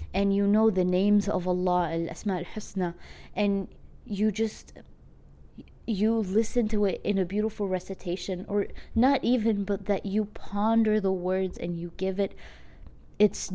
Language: English